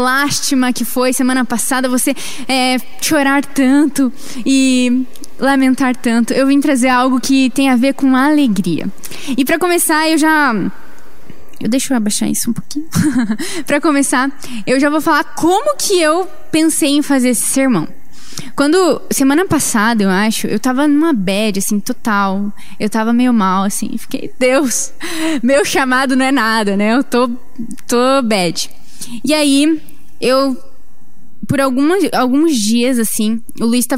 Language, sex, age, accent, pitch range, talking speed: Portuguese, female, 10-29, Brazilian, 235-290 Hz, 155 wpm